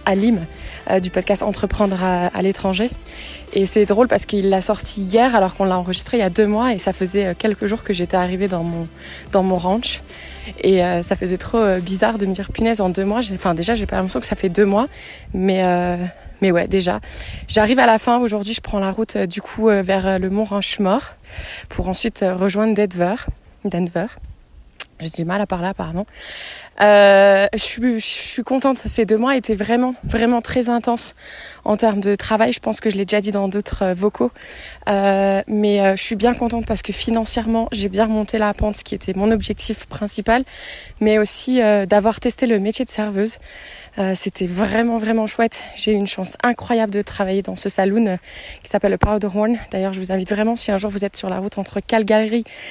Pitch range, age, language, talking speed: 190-225 Hz, 20-39, French, 215 wpm